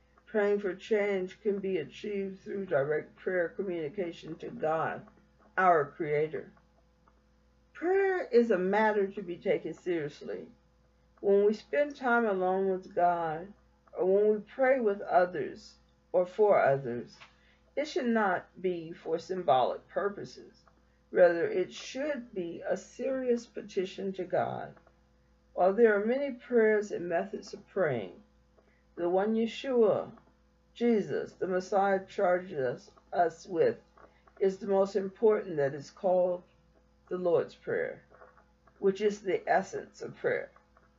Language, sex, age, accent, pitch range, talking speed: English, female, 50-69, American, 165-215 Hz, 130 wpm